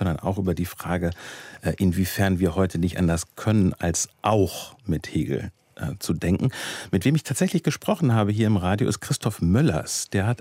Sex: male